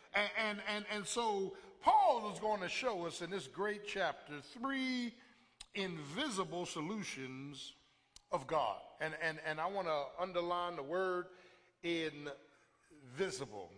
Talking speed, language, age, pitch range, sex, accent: 130 wpm, English, 50-69, 175-225 Hz, male, American